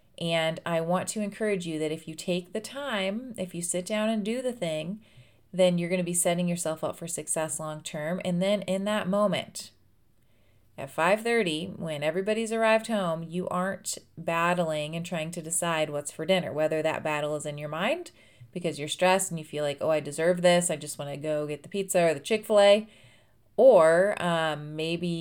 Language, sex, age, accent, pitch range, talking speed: English, female, 30-49, American, 150-185 Hz, 200 wpm